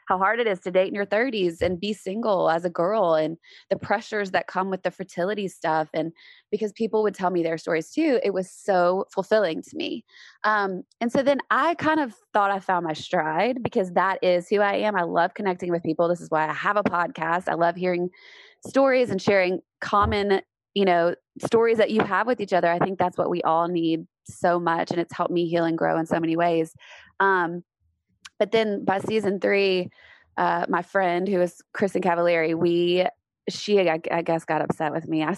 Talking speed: 220 wpm